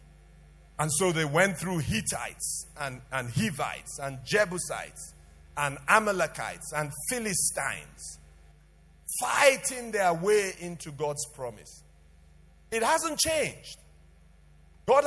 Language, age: English, 50-69